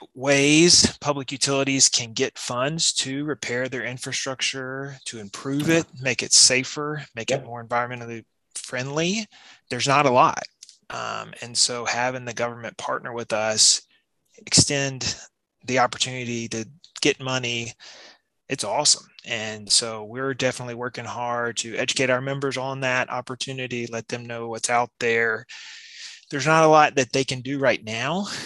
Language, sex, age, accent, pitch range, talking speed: English, male, 20-39, American, 120-145 Hz, 150 wpm